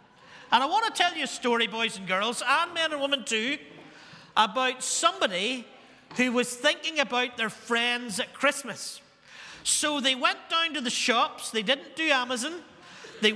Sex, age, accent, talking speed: male, 40-59, British, 170 wpm